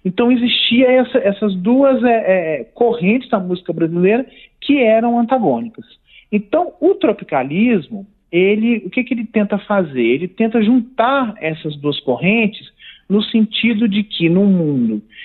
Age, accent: 40-59, Brazilian